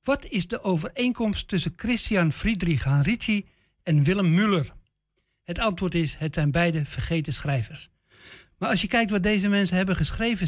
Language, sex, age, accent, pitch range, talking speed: Dutch, male, 60-79, Dutch, 150-190 Hz, 160 wpm